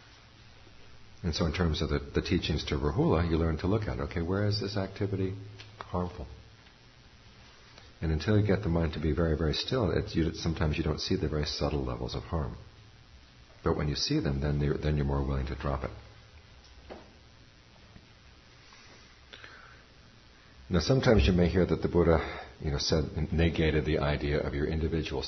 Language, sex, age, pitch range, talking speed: English, male, 60-79, 75-100 Hz, 175 wpm